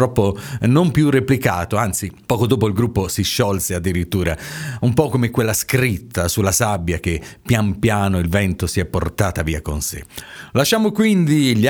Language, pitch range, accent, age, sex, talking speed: Italian, 105-140 Hz, native, 40-59, male, 165 wpm